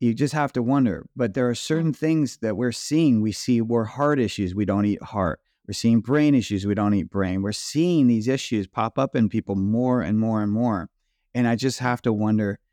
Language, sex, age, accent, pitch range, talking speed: English, male, 30-49, American, 105-130 Hz, 230 wpm